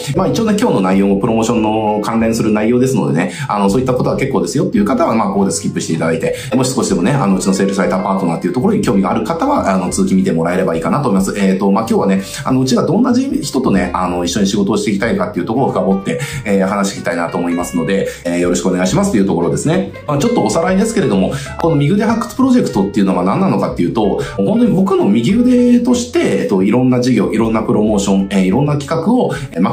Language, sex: Japanese, male